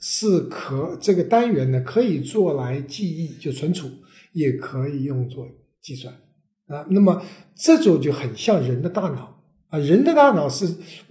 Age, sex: 60-79, male